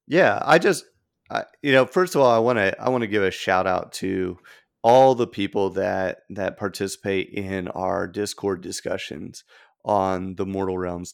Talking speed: 185 wpm